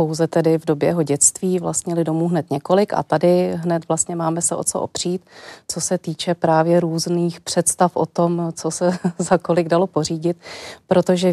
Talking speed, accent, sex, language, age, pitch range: 180 wpm, native, female, Czech, 30-49, 155-175 Hz